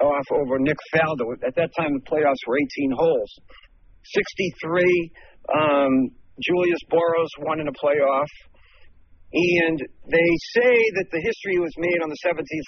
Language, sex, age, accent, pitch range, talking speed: English, male, 50-69, American, 140-180 Hz, 150 wpm